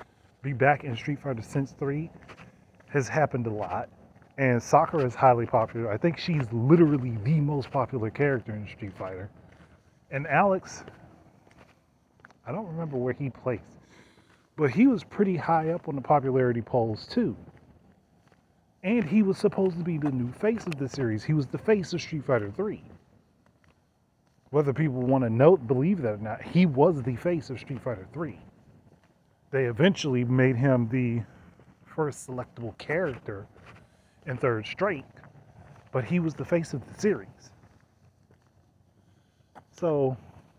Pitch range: 110-150 Hz